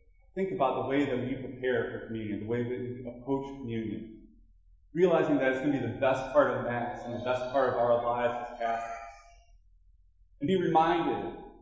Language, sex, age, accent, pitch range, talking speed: English, male, 20-39, American, 105-145 Hz, 195 wpm